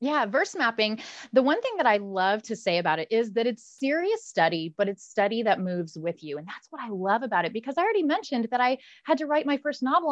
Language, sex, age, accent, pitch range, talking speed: English, female, 30-49, American, 195-260 Hz, 260 wpm